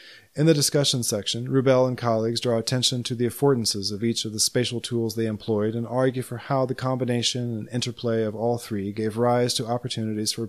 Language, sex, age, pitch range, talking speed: English, male, 30-49, 110-125 Hz, 205 wpm